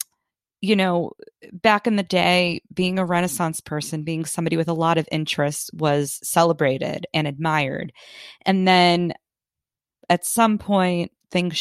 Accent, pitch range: American, 155-185 Hz